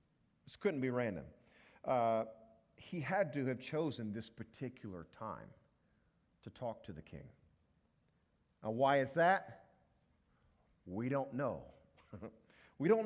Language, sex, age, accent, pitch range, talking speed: English, male, 50-69, American, 110-155 Hz, 125 wpm